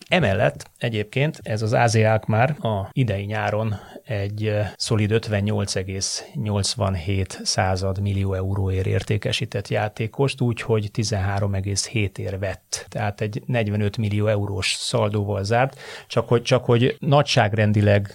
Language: Hungarian